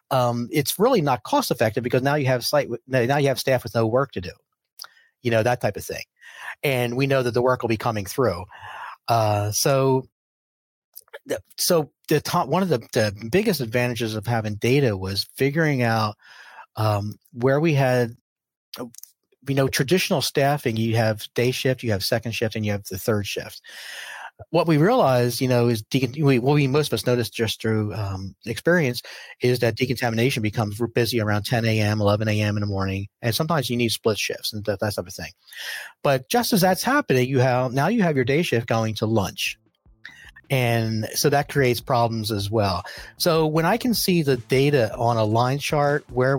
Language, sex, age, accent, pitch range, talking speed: English, male, 40-59, American, 110-135 Hz, 195 wpm